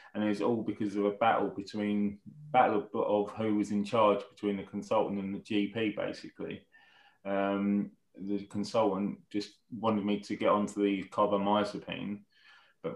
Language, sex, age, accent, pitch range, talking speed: English, male, 20-39, British, 100-110 Hz, 160 wpm